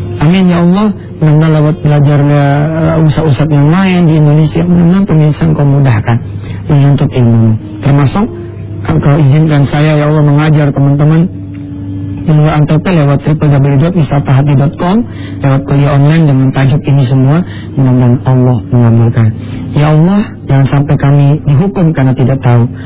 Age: 40-59